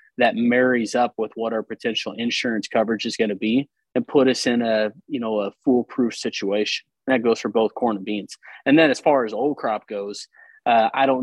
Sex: male